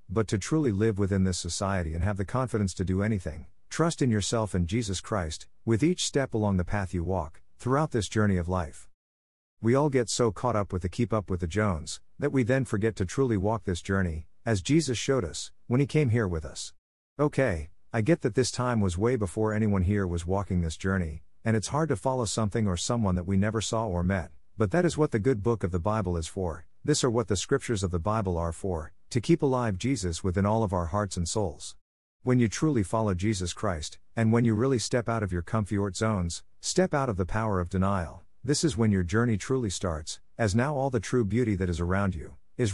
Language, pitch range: English, 90-120 Hz